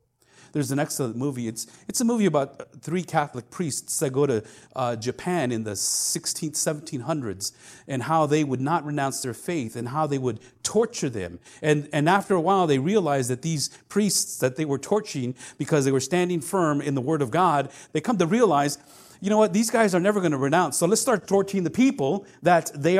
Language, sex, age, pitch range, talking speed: English, male, 40-59, 125-175 Hz, 210 wpm